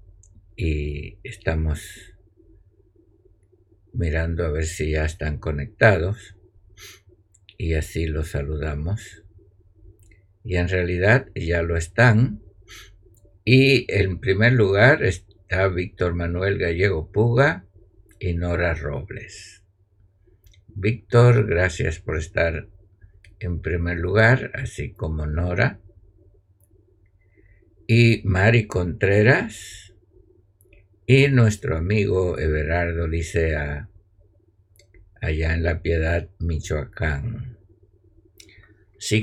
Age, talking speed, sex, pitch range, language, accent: 60-79, 85 wpm, male, 90-100 Hz, Spanish, Spanish